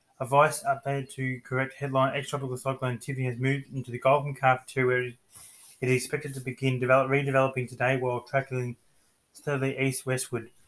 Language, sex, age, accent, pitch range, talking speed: English, male, 20-39, Australian, 125-140 Hz, 165 wpm